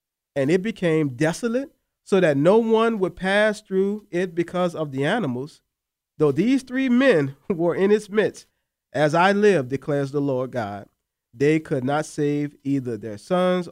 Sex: male